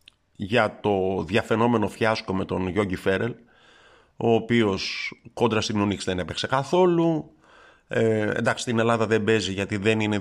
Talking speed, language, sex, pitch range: 145 wpm, Greek, male, 100-120 Hz